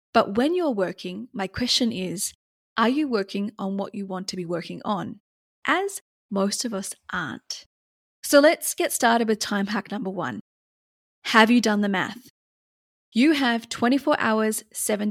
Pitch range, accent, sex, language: 205-260 Hz, Australian, female, English